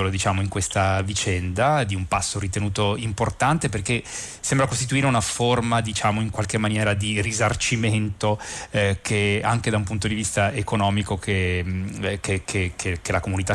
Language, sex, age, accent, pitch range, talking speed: Italian, male, 30-49, native, 95-115 Hz, 160 wpm